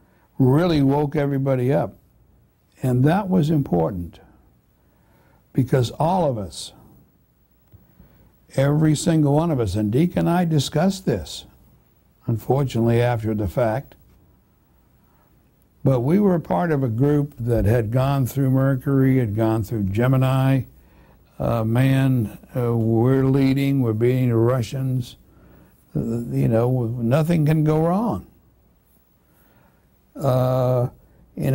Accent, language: American, English